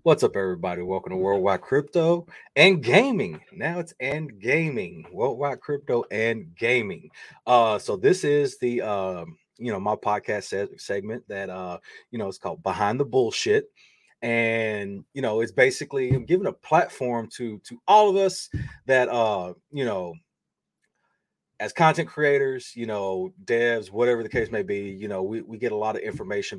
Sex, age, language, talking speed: male, 30-49, English, 165 wpm